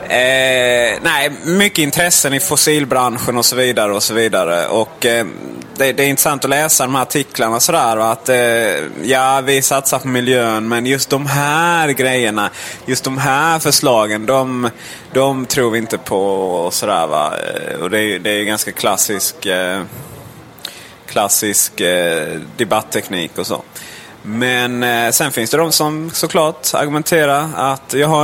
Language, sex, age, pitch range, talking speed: Swedish, male, 20-39, 120-150 Hz, 160 wpm